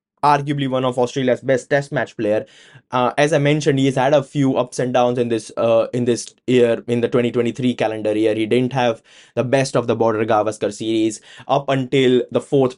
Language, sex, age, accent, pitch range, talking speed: English, male, 20-39, Indian, 125-160 Hz, 205 wpm